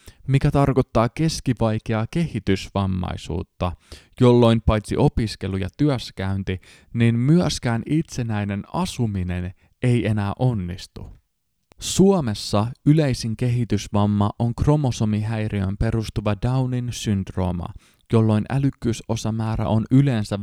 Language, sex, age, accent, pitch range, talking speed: Finnish, male, 20-39, native, 100-130 Hz, 80 wpm